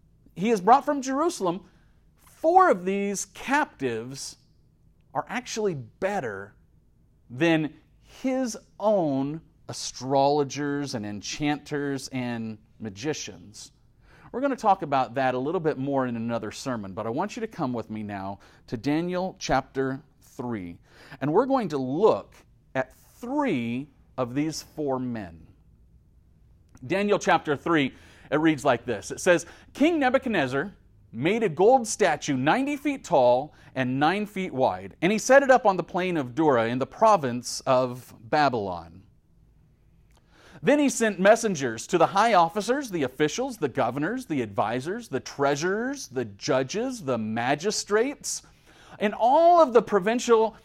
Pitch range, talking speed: 130-215 Hz, 140 wpm